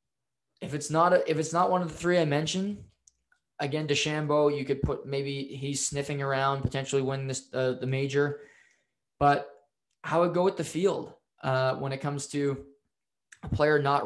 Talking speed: 185 wpm